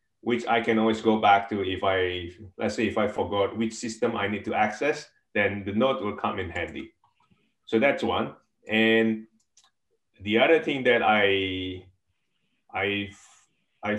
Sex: male